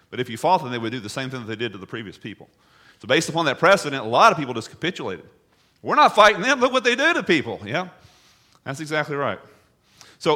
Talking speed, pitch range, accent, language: 255 wpm, 110-140 Hz, American, English